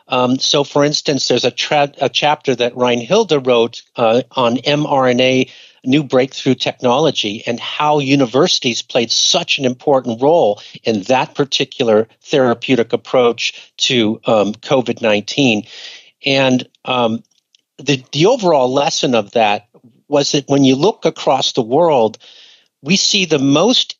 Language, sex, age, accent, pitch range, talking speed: English, male, 50-69, American, 120-145 Hz, 140 wpm